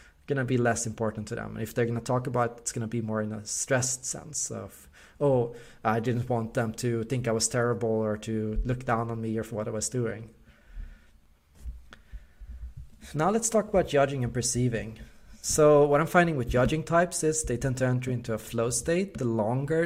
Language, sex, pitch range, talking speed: English, male, 110-140 Hz, 220 wpm